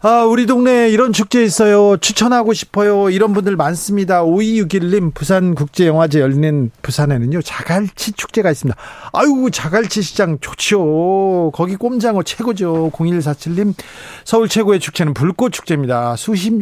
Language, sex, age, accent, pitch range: Korean, male, 40-59, native, 140-195 Hz